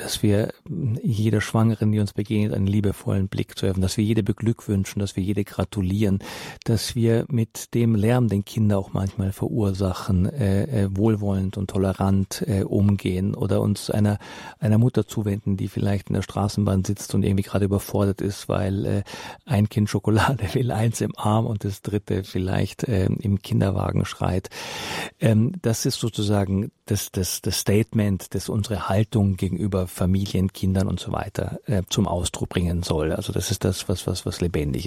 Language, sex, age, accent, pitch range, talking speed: German, male, 40-59, German, 95-115 Hz, 165 wpm